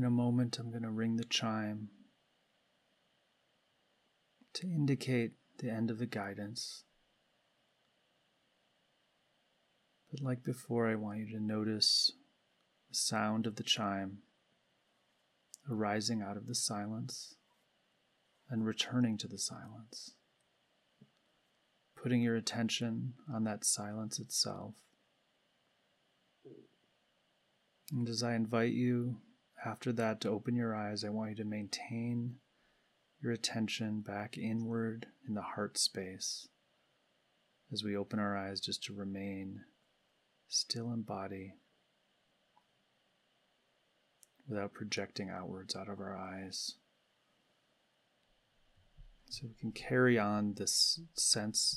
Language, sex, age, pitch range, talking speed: English, male, 30-49, 100-120 Hz, 110 wpm